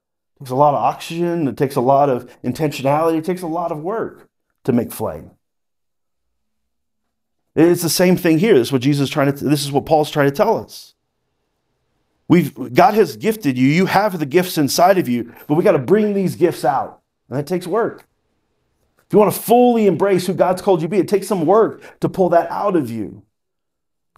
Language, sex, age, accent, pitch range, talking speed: English, male, 40-59, American, 140-180 Hz, 205 wpm